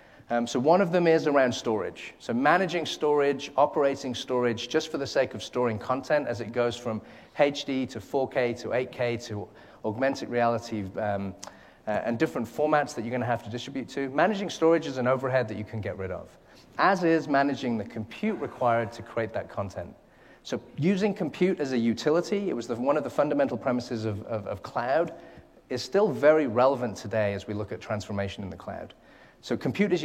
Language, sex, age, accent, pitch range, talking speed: English, male, 30-49, British, 115-145 Hz, 195 wpm